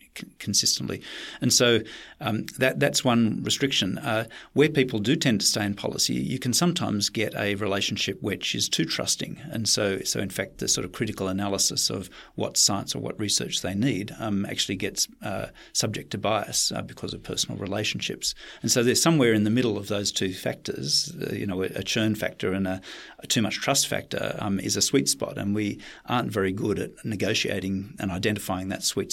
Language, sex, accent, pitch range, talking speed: English, male, Australian, 100-120 Hz, 200 wpm